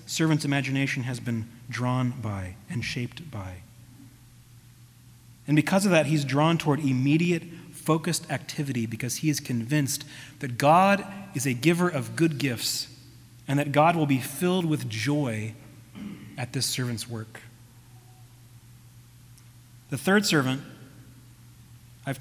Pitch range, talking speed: 120-150 Hz, 125 wpm